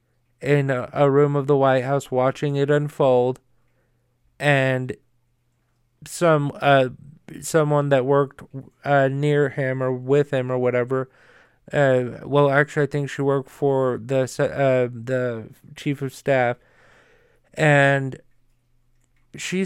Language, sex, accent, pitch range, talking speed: English, male, American, 130-150 Hz, 125 wpm